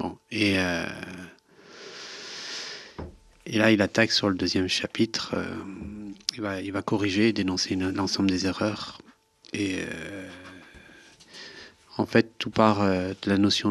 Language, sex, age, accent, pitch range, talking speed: French, male, 40-59, French, 95-110 Hz, 135 wpm